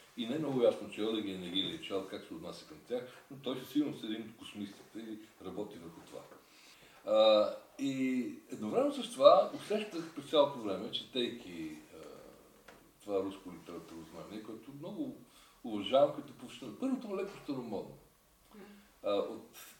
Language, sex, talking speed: Bulgarian, male, 150 wpm